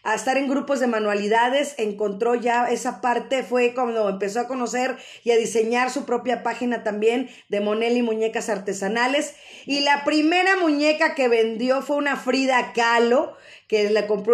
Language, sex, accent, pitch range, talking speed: Spanish, female, Mexican, 230-280 Hz, 165 wpm